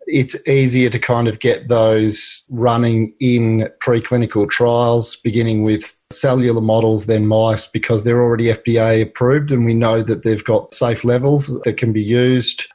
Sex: male